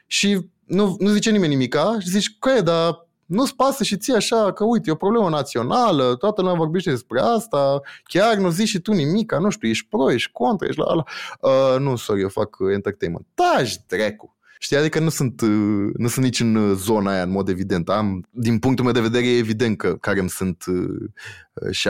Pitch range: 95-150 Hz